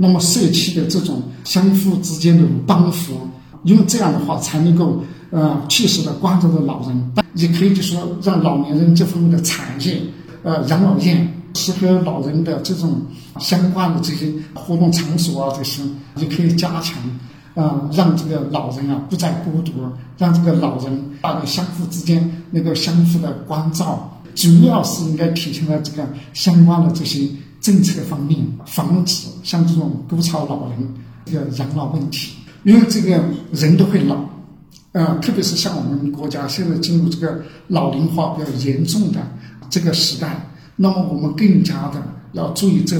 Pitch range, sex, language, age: 150-180 Hz, male, Chinese, 50-69